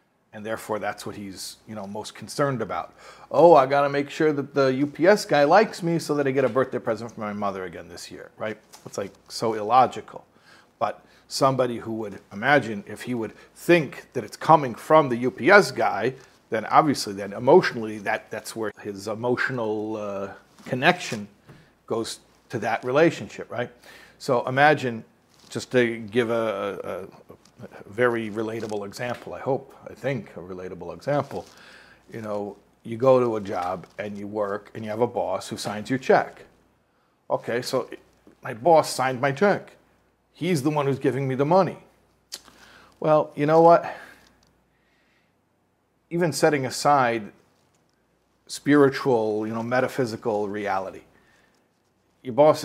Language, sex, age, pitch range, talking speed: English, male, 50-69, 105-140 Hz, 155 wpm